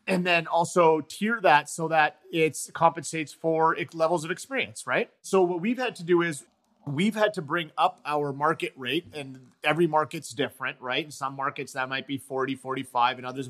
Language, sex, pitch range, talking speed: English, male, 135-175 Hz, 200 wpm